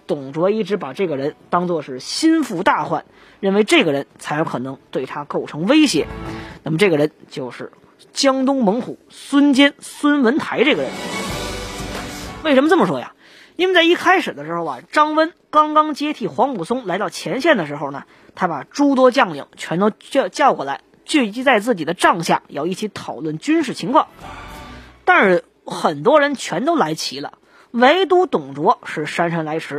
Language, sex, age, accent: Chinese, female, 20-39, native